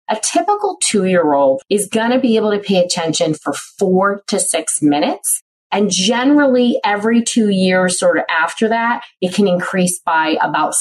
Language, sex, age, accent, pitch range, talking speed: English, female, 30-49, American, 170-235 Hz, 180 wpm